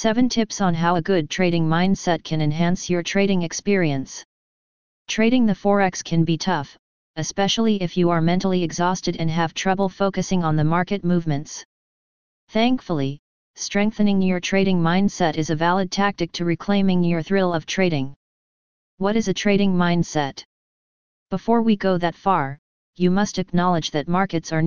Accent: American